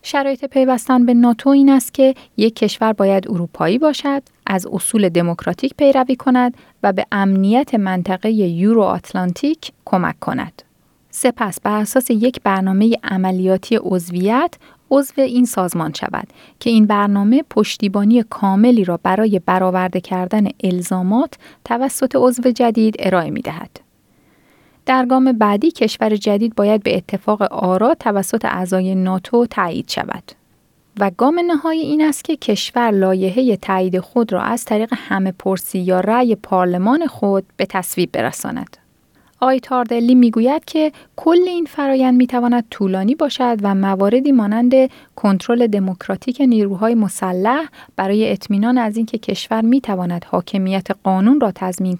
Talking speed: 135 wpm